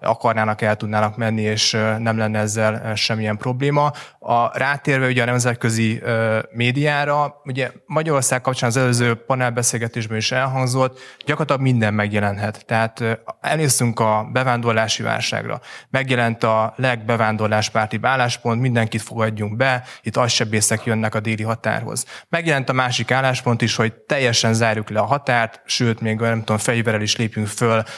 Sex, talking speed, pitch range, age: male, 135 wpm, 110-130 Hz, 20-39